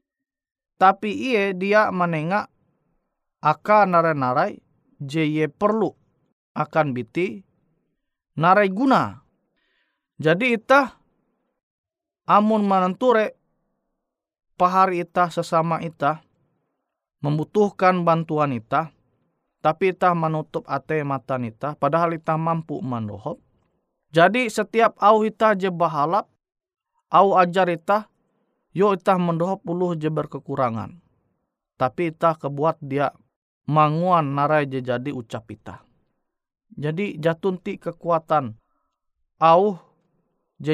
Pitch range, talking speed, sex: 140-195 Hz, 95 wpm, male